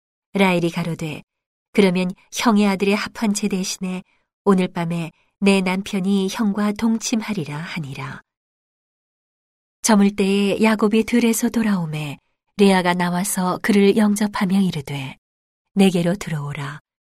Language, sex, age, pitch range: Korean, female, 40-59, 170-205 Hz